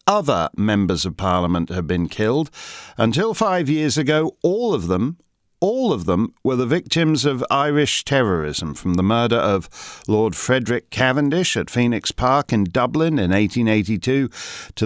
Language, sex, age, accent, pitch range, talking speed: English, male, 50-69, British, 105-145 Hz, 155 wpm